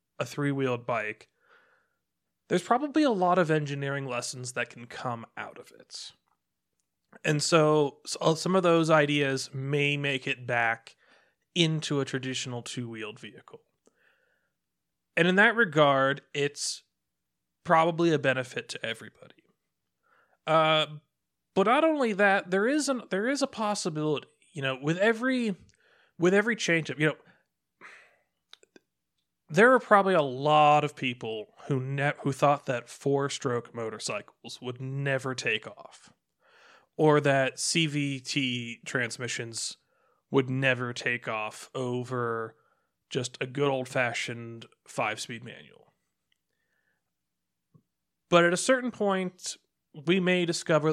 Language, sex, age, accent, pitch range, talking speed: English, male, 30-49, American, 125-165 Hz, 125 wpm